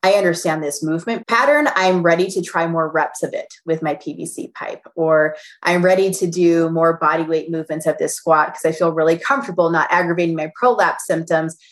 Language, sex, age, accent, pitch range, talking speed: English, female, 20-39, American, 165-210 Hz, 200 wpm